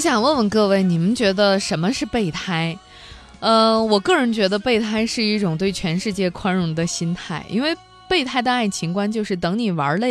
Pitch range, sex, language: 165-235 Hz, female, Chinese